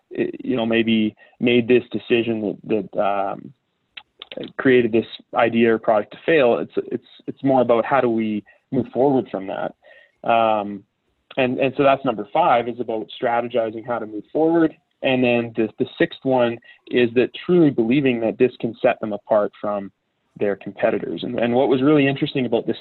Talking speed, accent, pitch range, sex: 185 wpm, American, 115-130 Hz, male